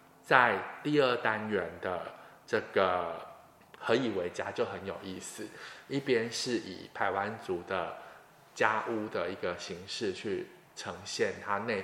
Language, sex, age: Chinese, male, 20-39